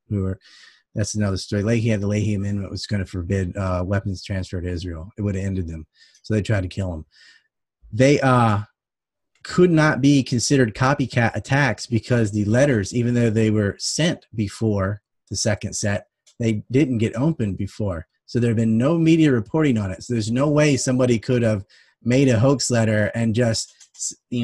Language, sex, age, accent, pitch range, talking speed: English, male, 30-49, American, 105-125 Hz, 190 wpm